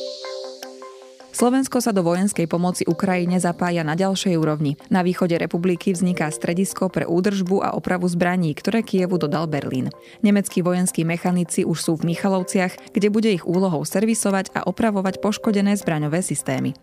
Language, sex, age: Slovak, female, 20-39